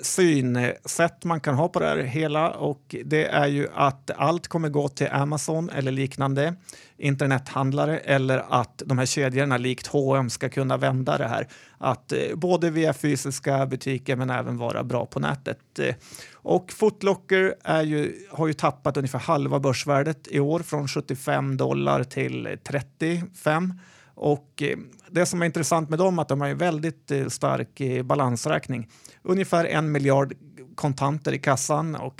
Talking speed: 155 wpm